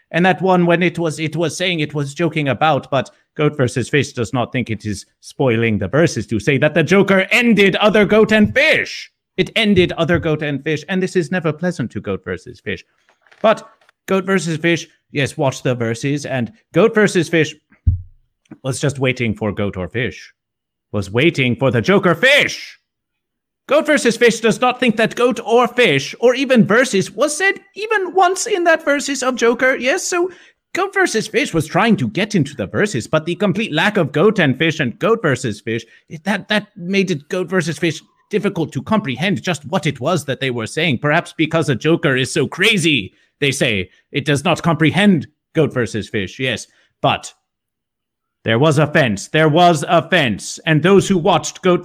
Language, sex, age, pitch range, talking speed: English, male, 50-69, 135-200 Hz, 195 wpm